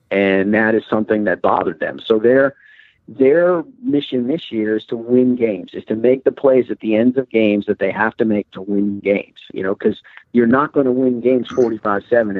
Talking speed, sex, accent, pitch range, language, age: 220 wpm, male, American, 105-130 Hz, English, 50-69